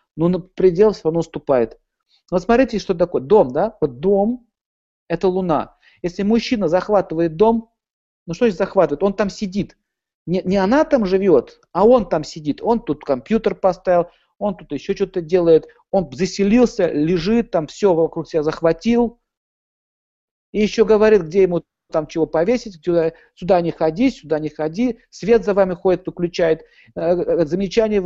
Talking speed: 160 wpm